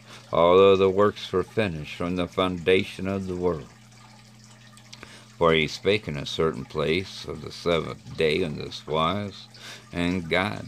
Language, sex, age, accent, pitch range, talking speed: English, male, 50-69, American, 90-110 Hz, 150 wpm